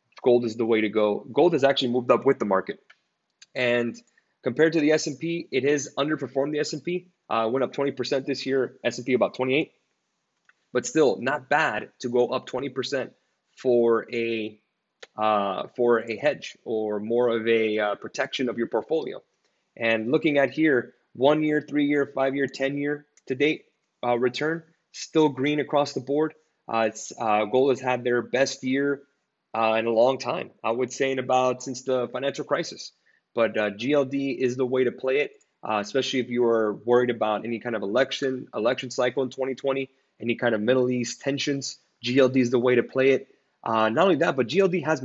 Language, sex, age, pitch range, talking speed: English, male, 20-39, 115-135 Hz, 190 wpm